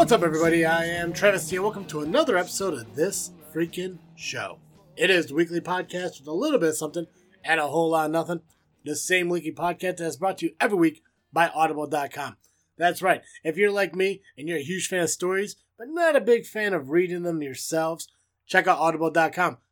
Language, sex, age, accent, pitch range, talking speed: English, male, 20-39, American, 150-185 Hz, 215 wpm